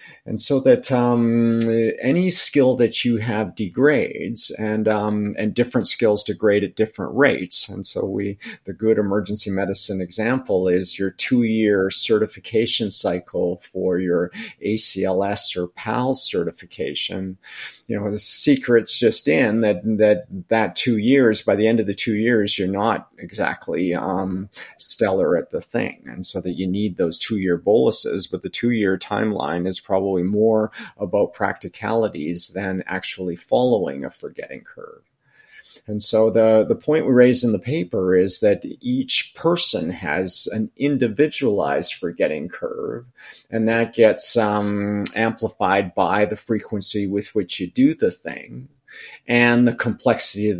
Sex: male